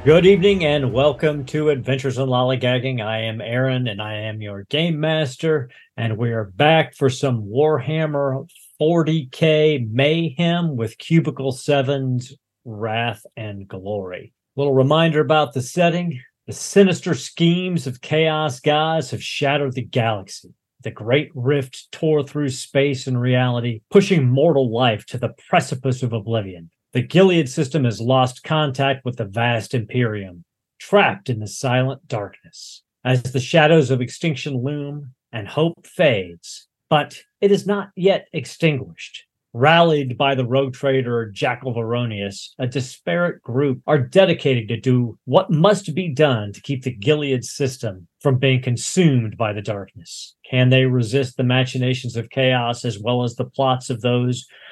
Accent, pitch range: American, 120-155 Hz